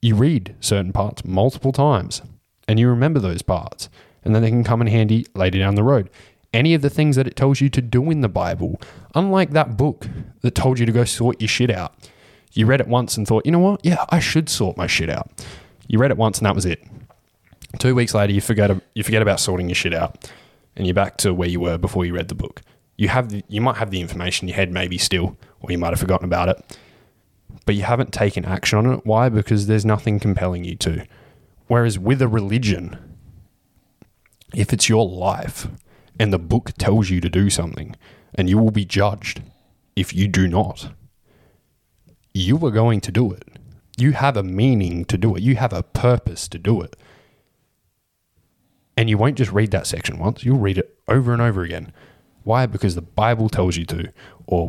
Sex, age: male, 20-39